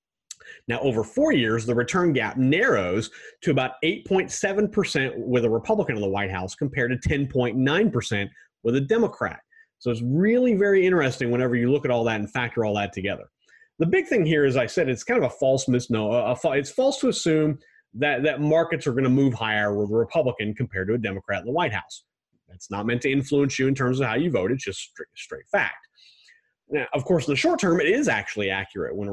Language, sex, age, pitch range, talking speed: English, male, 30-49, 105-145 Hz, 220 wpm